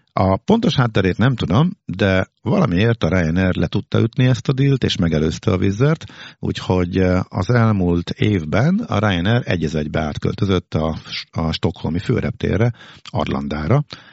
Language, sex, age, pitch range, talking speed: Hungarian, male, 50-69, 80-115 Hz, 140 wpm